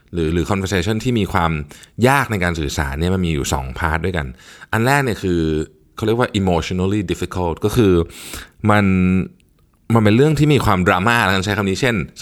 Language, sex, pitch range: Thai, male, 80-105 Hz